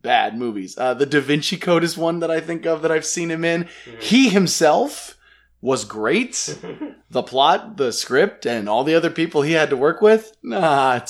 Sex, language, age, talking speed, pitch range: male, English, 20-39, 200 wpm, 115-160 Hz